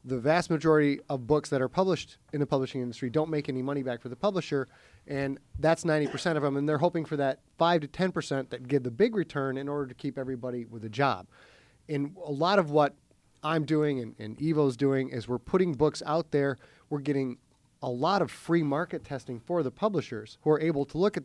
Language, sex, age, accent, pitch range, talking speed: English, male, 30-49, American, 125-155 Hz, 225 wpm